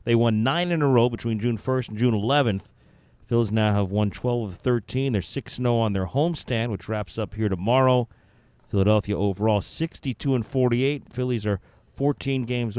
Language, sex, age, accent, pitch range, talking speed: English, male, 40-59, American, 100-120 Hz, 175 wpm